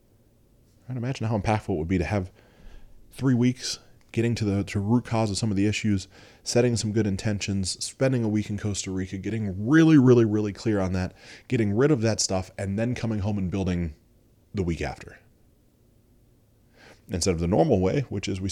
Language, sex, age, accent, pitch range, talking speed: English, male, 20-39, American, 95-115 Hz, 200 wpm